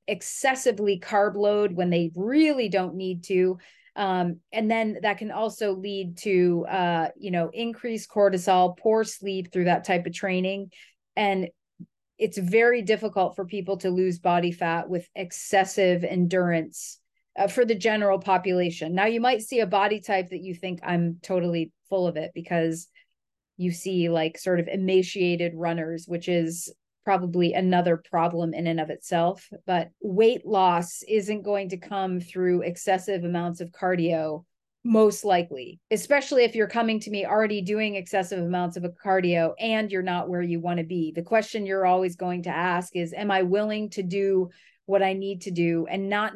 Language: English